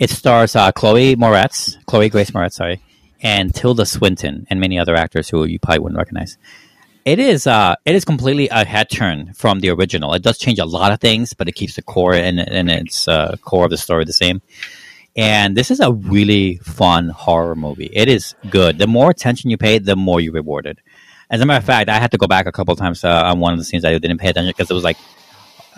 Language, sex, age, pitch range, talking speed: English, male, 30-49, 85-110 Hz, 245 wpm